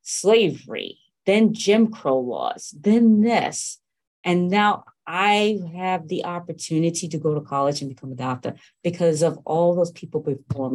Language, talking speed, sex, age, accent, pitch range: English, 150 wpm, female, 30-49, American, 150-210 Hz